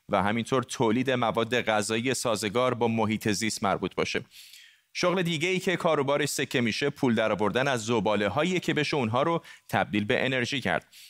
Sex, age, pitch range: male, 30-49, 115-150 Hz